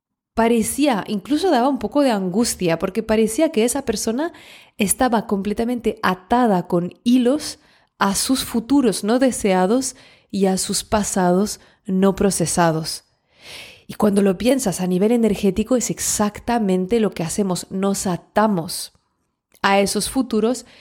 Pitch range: 185-230 Hz